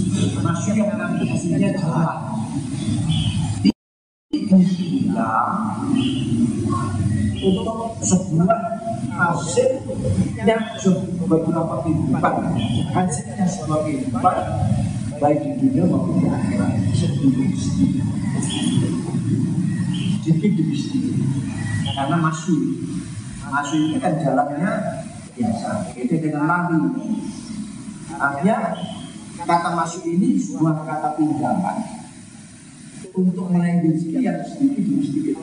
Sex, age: male, 50-69